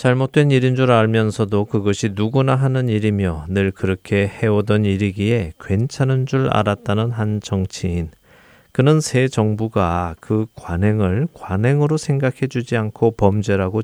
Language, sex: Korean, male